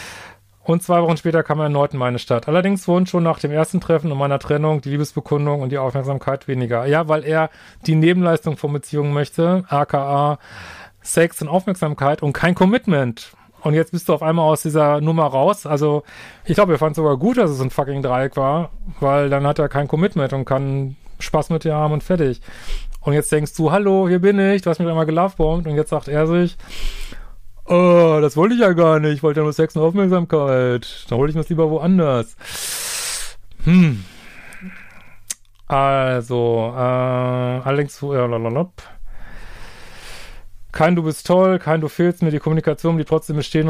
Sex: male